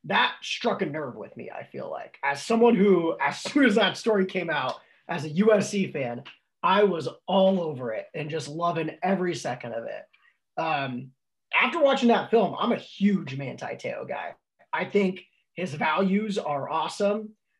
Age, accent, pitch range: 30-49, American, 170-215 Hz